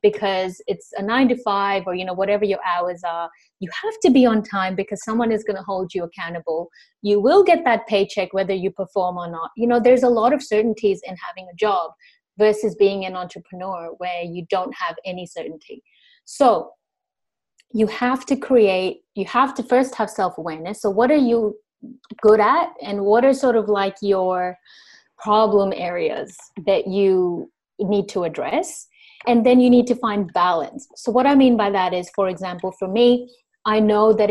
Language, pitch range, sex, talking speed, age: English, 180-235 Hz, female, 190 wpm, 30-49